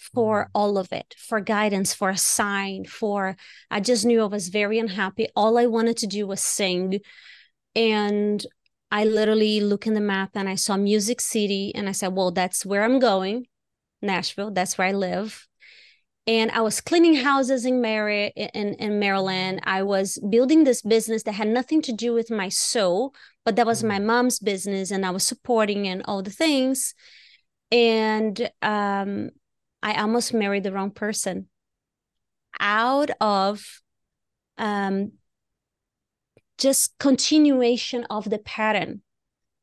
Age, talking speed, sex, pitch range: 30-49, 155 wpm, female, 200-245 Hz